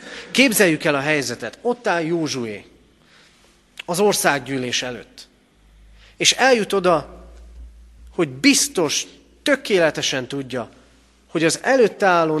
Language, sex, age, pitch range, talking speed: Hungarian, male, 30-49, 125-175 Hz, 100 wpm